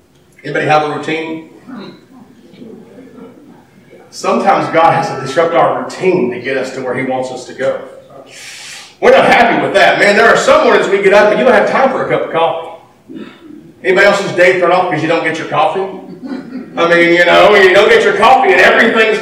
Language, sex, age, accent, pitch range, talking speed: English, male, 40-59, American, 170-265 Hz, 205 wpm